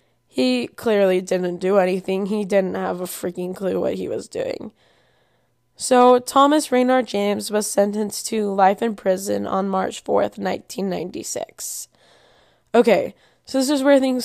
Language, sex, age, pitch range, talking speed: English, female, 10-29, 190-210 Hz, 145 wpm